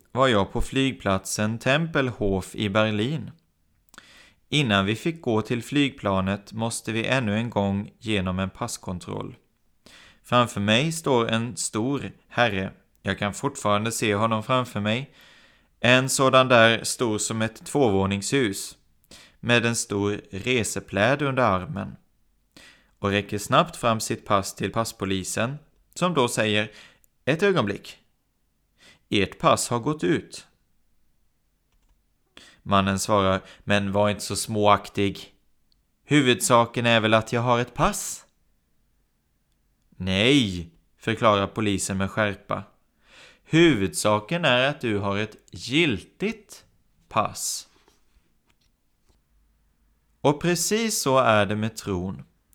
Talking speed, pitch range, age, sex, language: 115 wpm, 100-125 Hz, 30-49, male, Swedish